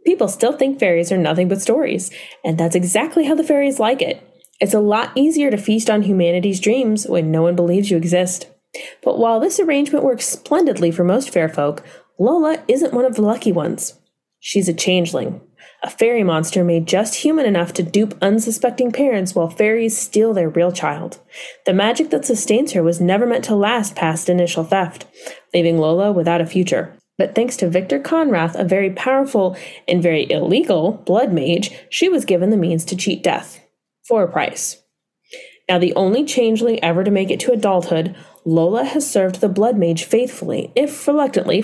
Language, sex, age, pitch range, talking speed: English, female, 20-39, 175-250 Hz, 185 wpm